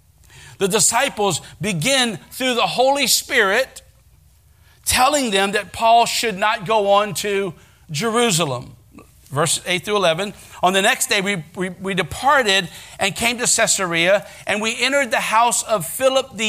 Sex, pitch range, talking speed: male, 170-225 Hz, 145 wpm